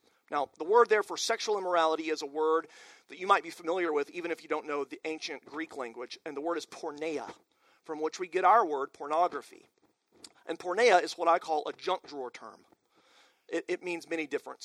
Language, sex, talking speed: English, male, 215 wpm